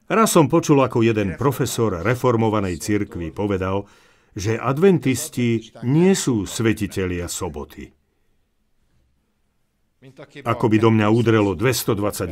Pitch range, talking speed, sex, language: 100-155 Hz, 100 wpm, male, Slovak